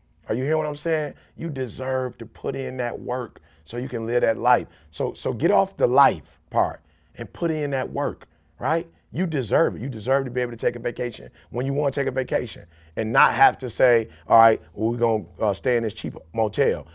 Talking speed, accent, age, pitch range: 235 wpm, American, 30-49, 105-140 Hz